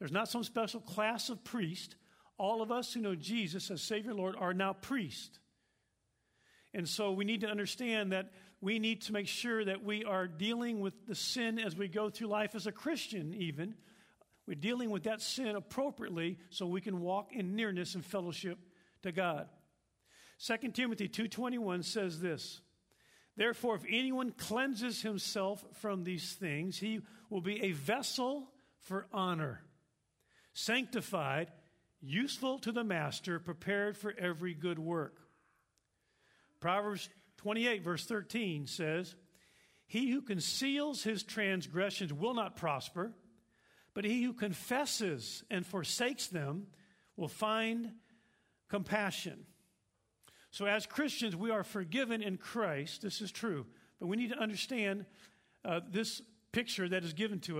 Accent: American